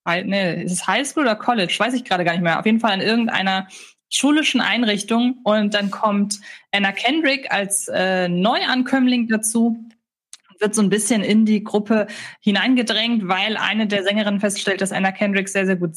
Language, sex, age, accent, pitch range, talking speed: German, female, 20-39, German, 205-240 Hz, 180 wpm